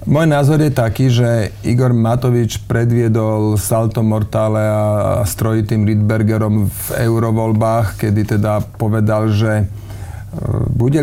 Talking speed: 110 wpm